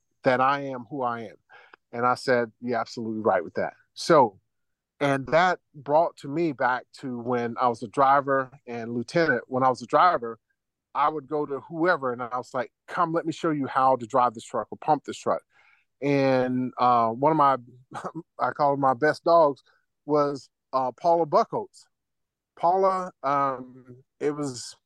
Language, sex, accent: English, male, American